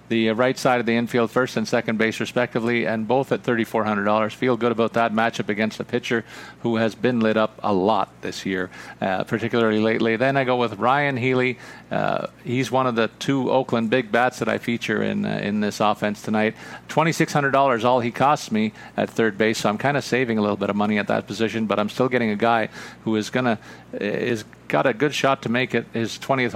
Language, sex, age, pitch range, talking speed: English, male, 50-69, 110-125 Hz, 225 wpm